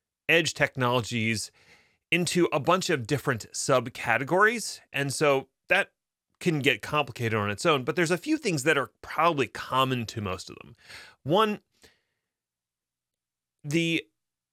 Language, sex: English, male